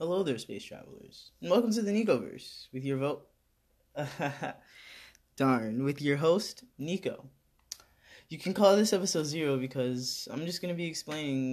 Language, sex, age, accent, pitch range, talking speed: English, male, 10-29, American, 125-165 Hz, 150 wpm